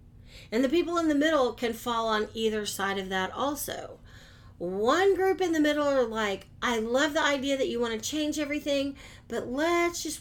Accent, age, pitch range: American, 40-59, 195-285 Hz